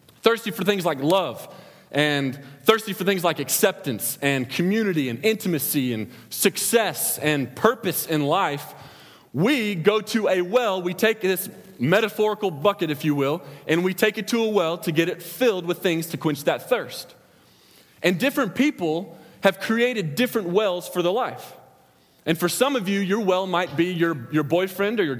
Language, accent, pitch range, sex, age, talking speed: English, American, 170-220 Hz, male, 30-49, 180 wpm